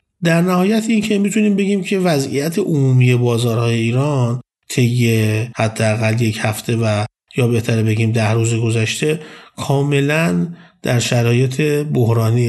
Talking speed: 120 wpm